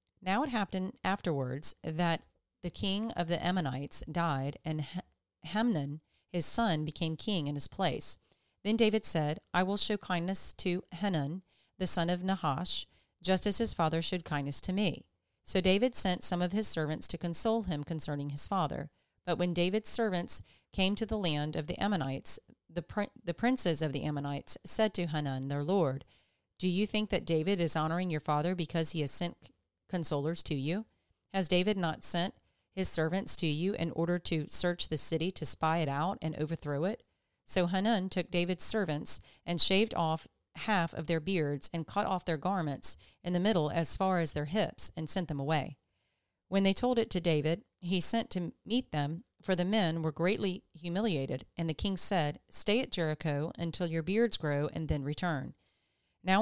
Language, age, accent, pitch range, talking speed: English, 40-59, American, 155-195 Hz, 185 wpm